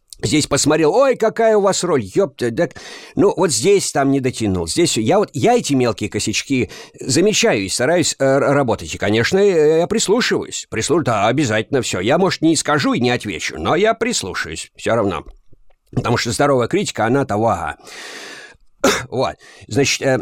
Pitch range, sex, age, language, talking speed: 115-185 Hz, male, 50-69, Russian, 170 wpm